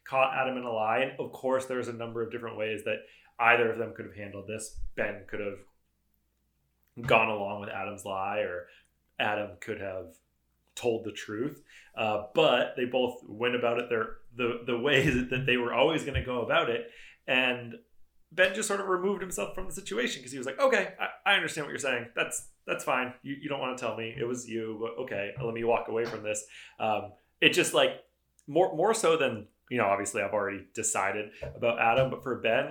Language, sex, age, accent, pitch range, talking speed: English, male, 30-49, American, 110-130 Hz, 215 wpm